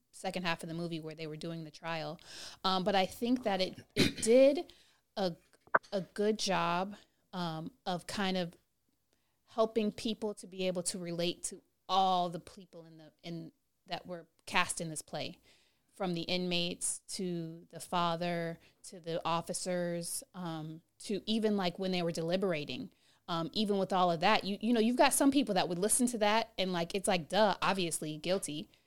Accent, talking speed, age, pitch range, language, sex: American, 185 wpm, 30-49, 175-210 Hz, English, female